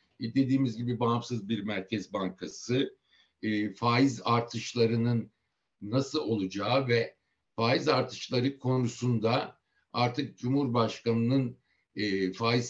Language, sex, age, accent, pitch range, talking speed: Turkish, male, 60-79, native, 110-130 Hz, 90 wpm